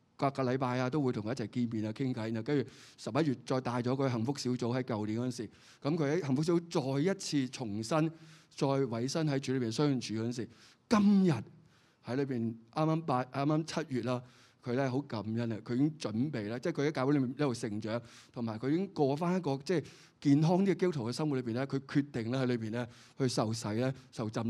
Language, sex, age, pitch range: Chinese, male, 20-39, 120-155 Hz